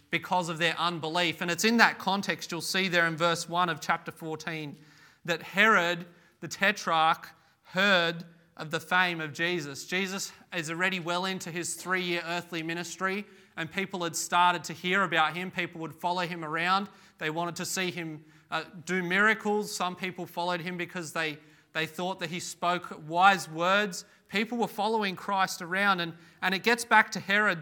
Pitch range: 165-195 Hz